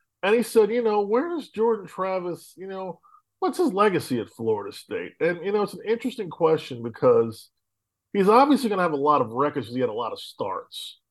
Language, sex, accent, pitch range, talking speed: English, male, American, 115-190 Hz, 215 wpm